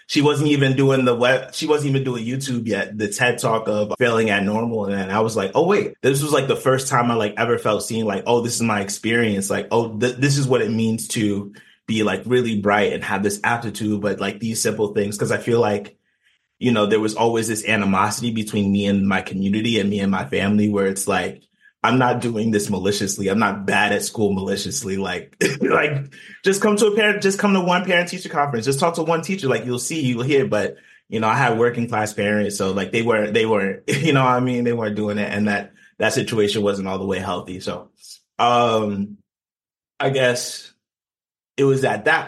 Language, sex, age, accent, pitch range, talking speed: English, male, 30-49, American, 100-125 Hz, 230 wpm